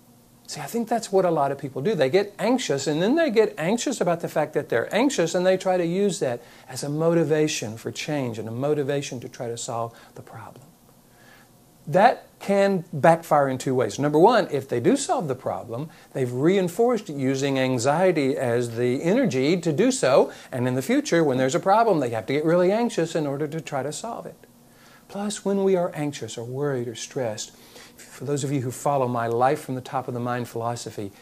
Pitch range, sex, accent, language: 130-185 Hz, male, American, English